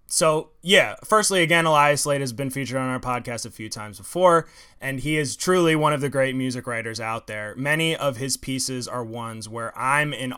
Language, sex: English, male